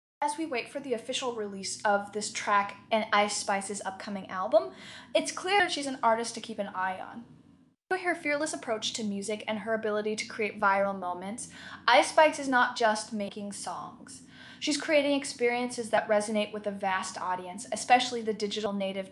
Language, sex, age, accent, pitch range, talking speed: English, female, 10-29, American, 200-245 Hz, 185 wpm